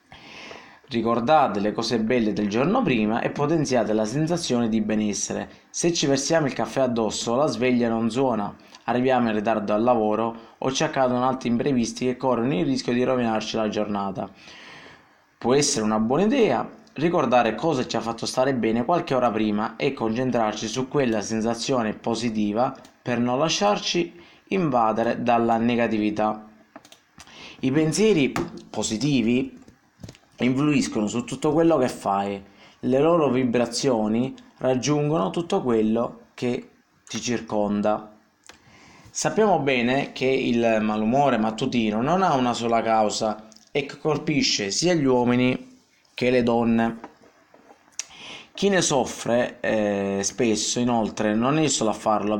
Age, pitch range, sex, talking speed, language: 20-39, 110-135 Hz, male, 135 wpm, Italian